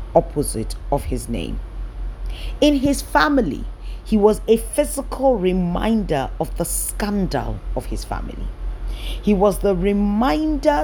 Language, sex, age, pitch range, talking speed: English, female, 40-59, 120-180 Hz, 120 wpm